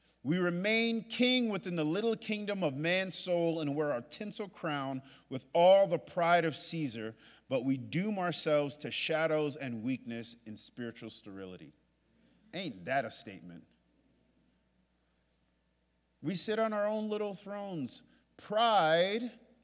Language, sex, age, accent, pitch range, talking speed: English, male, 40-59, American, 145-195 Hz, 135 wpm